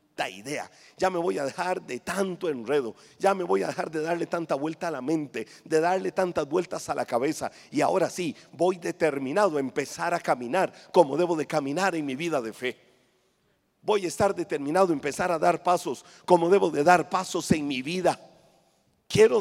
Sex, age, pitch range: male, 50-69, 170-245 Hz